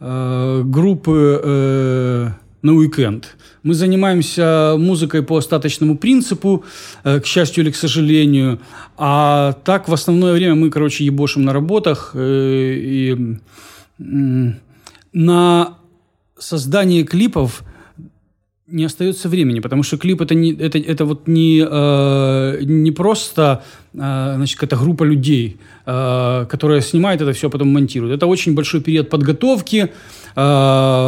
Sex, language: male, Ukrainian